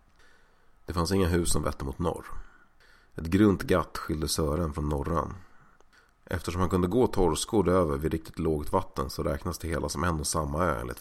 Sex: male